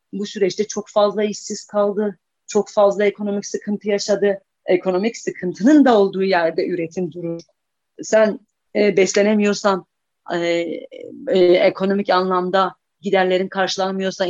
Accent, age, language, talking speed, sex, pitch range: native, 40-59, Turkish, 115 wpm, female, 185-215 Hz